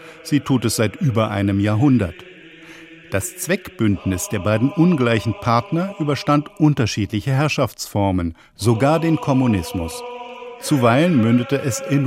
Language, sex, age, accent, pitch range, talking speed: German, male, 50-69, German, 110-160 Hz, 115 wpm